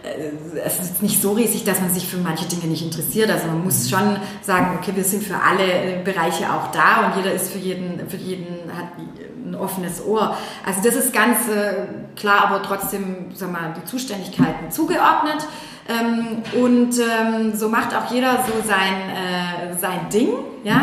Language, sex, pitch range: German, female, 195-245 Hz